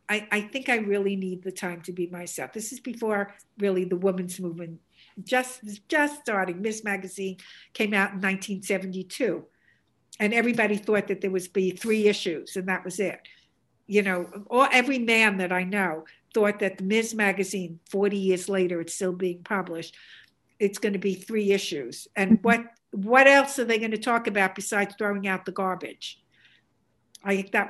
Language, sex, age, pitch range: English, female, 60-79, 190-230 Hz